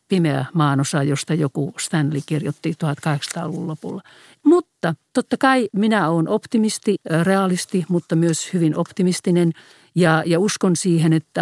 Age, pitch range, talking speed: 50-69, 155-190 Hz, 125 wpm